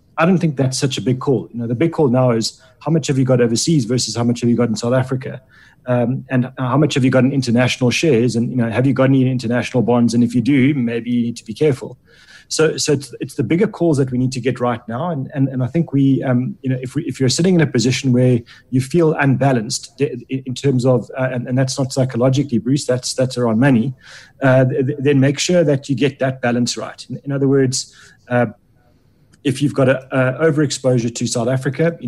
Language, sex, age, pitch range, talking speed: English, male, 30-49, 120-140 Hz, 250 wpm